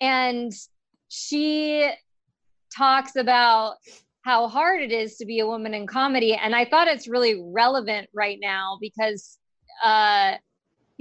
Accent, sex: American, female